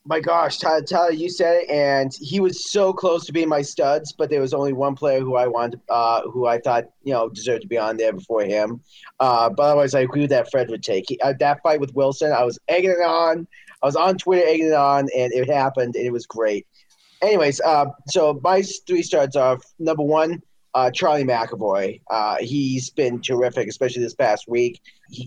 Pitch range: 130-160 Hz